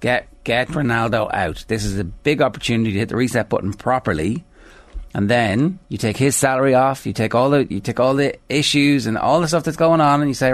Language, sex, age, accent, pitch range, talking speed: English, male, 30-49, Irish, 105-130 Hz, 235 wpm